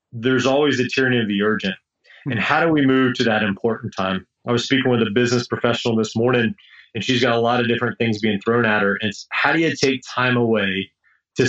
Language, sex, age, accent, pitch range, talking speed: English, male, 30-49, American, 110-130 Hz, 240 wpm